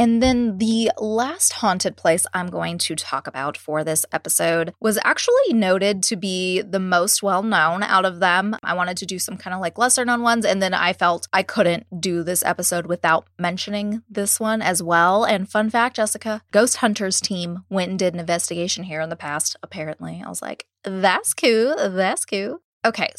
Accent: American